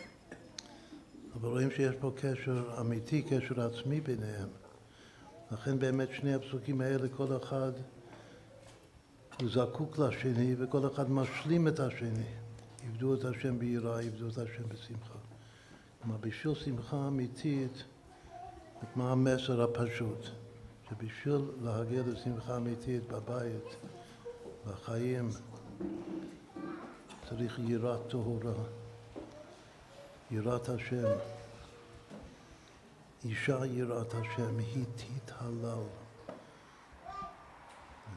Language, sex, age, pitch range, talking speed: Hebrew, male, 60-79, 115-130 Hz, 90 wpm